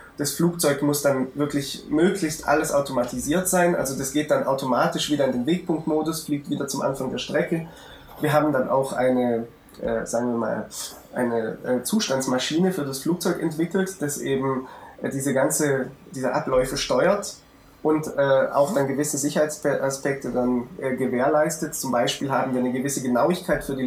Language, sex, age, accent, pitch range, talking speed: German, male, 20-39, German, 135-165 Hz, 165 wpm